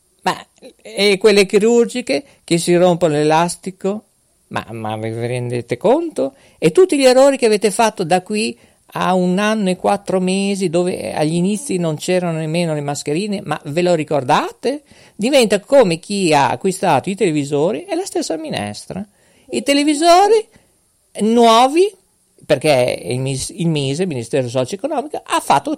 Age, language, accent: 50-69, Italian, native